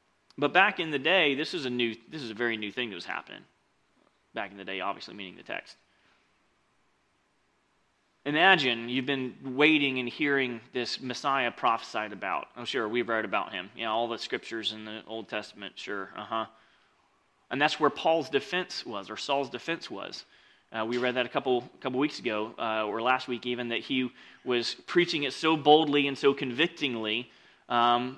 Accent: American